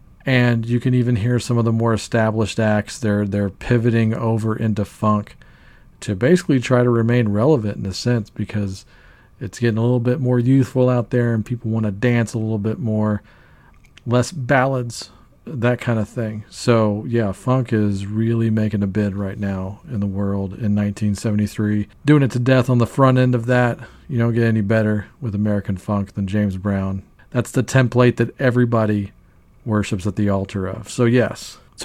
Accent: American